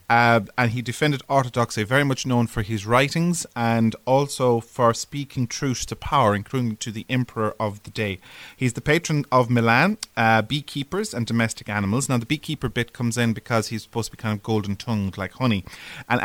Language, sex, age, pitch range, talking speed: English, male, 30-49, 110-135 Hz, 190 wpm